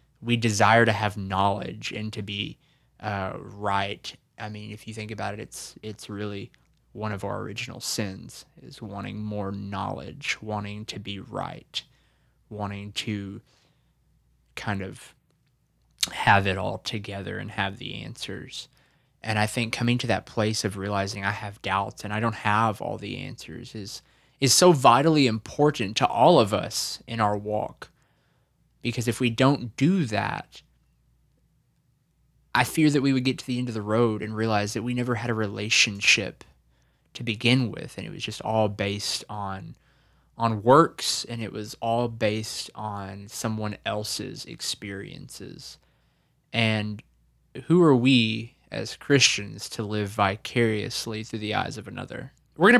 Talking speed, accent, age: 160 wpm, American, 20-39